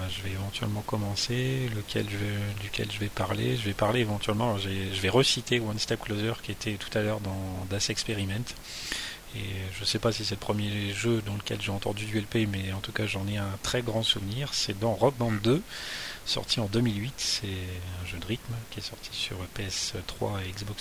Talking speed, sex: 210 wpm, male